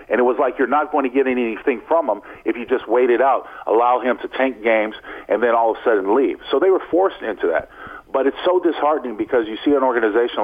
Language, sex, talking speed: English, male, 260 wpm